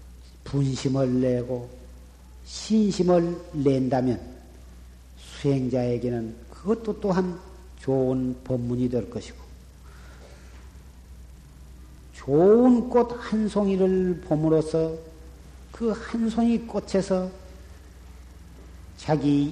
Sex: male